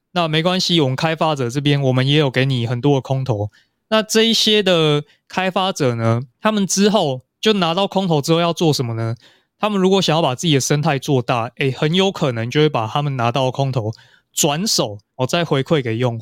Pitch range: 120-155 Hz